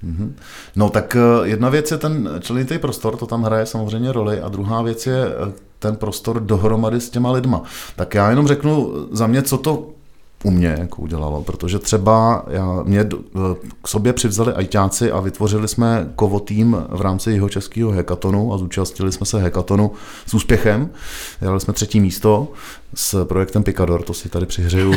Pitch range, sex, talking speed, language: 95-115 Hz, male, 170 wpm, Czech